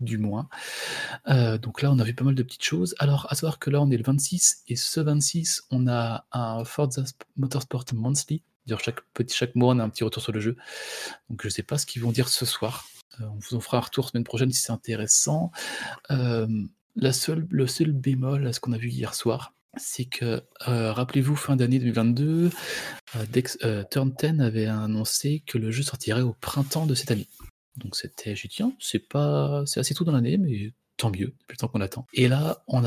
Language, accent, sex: French, French, male